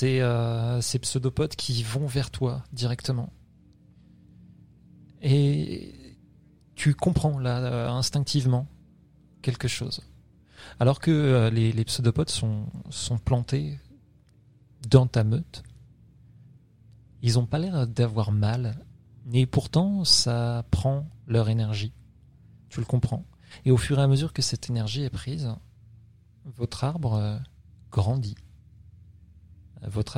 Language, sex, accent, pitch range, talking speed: French, male, French, 105-130 Hz, 120 wpm